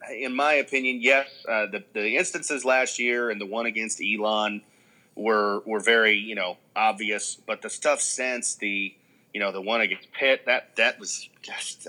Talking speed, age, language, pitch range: 180 wpm, 40-59, English, 105-120 Hz